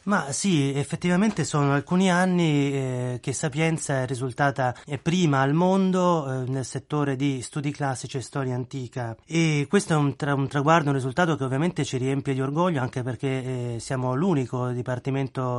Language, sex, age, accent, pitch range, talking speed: Italian, male, 30-49, native, 130-160 Hz, 165 wpm